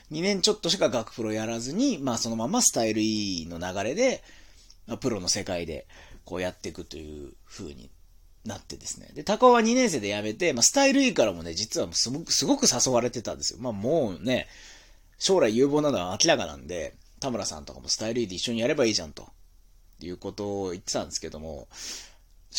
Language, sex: Japanese, male